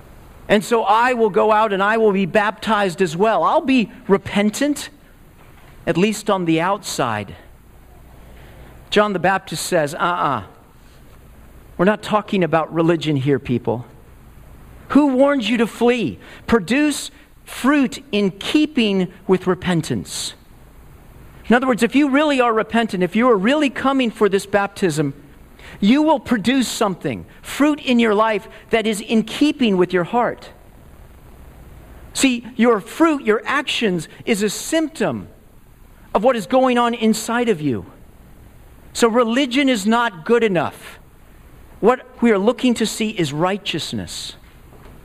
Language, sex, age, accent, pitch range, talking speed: English, male, 50-69, American, 180-240 Hz, 140 wpm